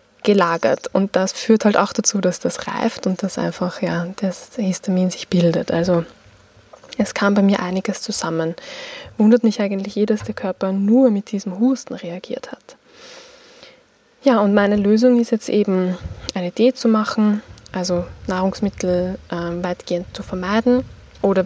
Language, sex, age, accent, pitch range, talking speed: German, female, 20-39, German, 180-230 Hz, 155 wpm